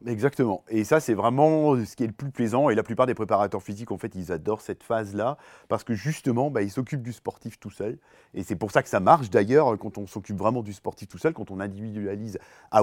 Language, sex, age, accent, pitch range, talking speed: French, male, 30-49, French, 105-130 Hz, 250 wpm